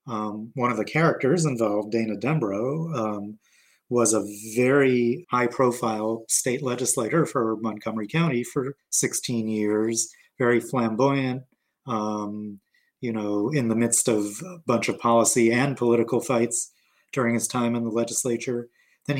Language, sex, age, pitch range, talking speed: English, male, 30-49, 115-140 Hz, 140 wpm